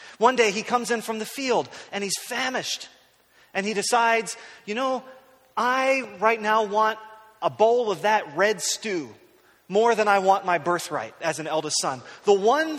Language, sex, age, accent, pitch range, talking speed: English, male, 30-49, American, 165-220 Hz, 180 wpm